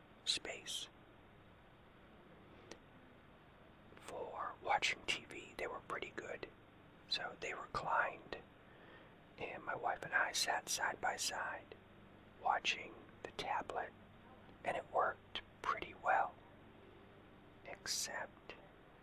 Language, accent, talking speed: English, American, 90 wpm